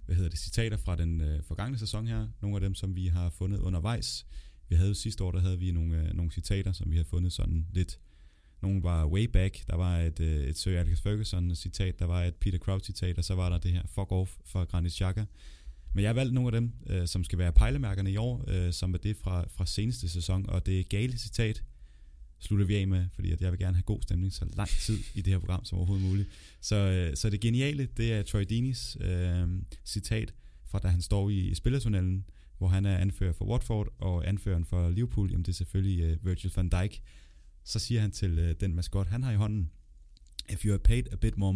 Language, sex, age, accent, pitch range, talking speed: Danish, male, 30-49, native, 85-100 Hz, 235 wpm